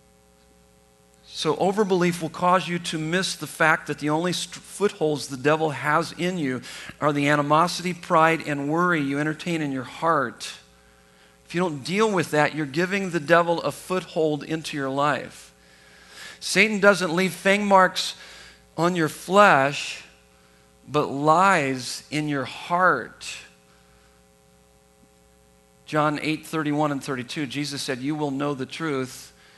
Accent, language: American, English